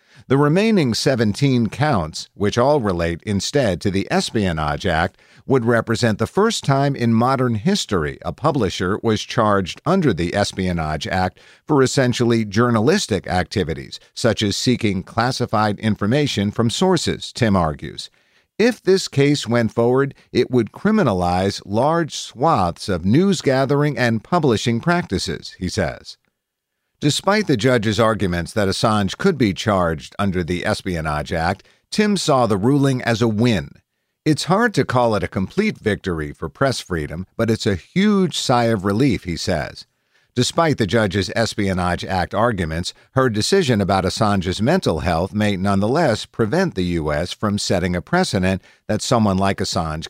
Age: 50-69